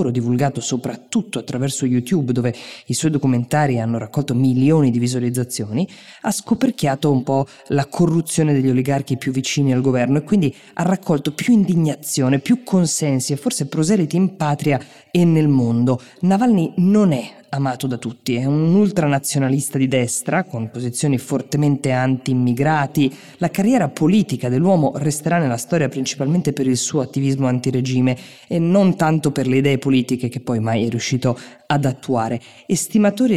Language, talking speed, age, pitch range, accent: Italian, 150 wpm, 20-39, 130-170 Hz, native